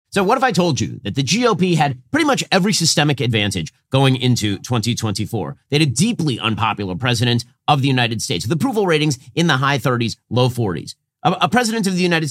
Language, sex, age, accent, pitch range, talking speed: English, male, 30-49, American, 125-180 Hz, 210 wpm